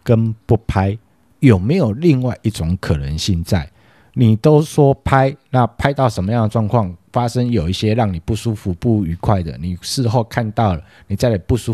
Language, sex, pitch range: Chinese, male, 100-135 Hz